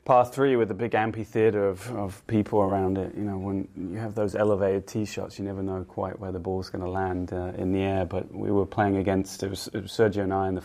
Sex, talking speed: male, 270 wpm